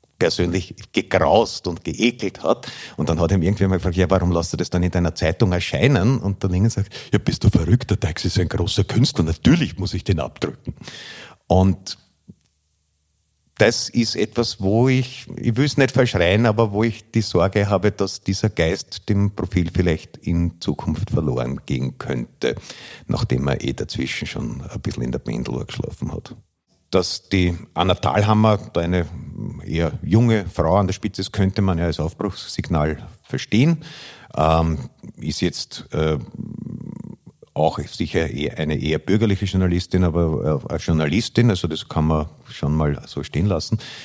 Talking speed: 165 wpm